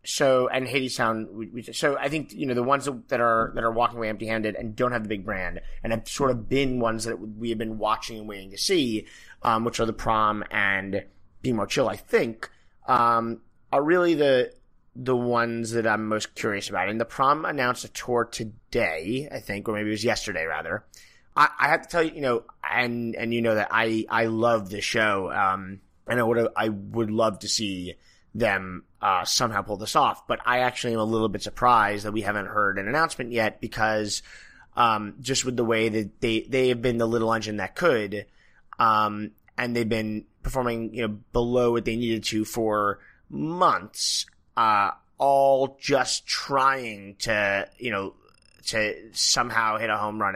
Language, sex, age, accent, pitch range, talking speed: English, male, 30-49, American, 105-125 Hz, 200 wpm